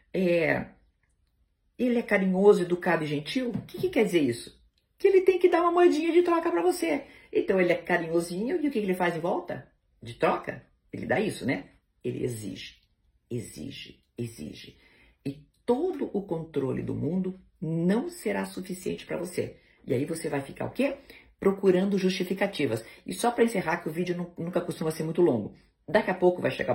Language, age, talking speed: Portuguese, 50-69, 180 wpm